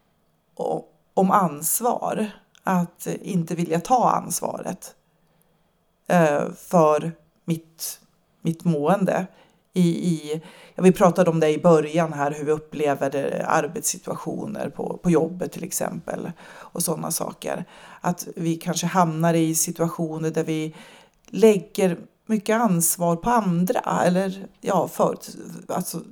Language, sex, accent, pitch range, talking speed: Swedish, female, native, 165-210 Hz, 115 wpm